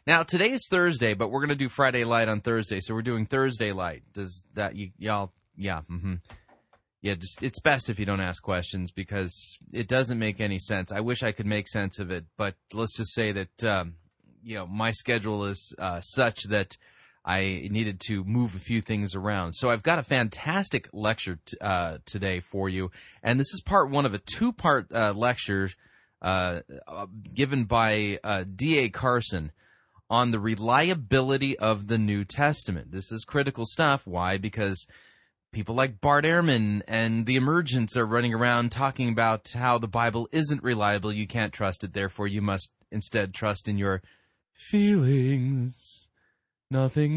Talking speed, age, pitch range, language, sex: 175 wpm, 30-49, 95-125 Hz, English, male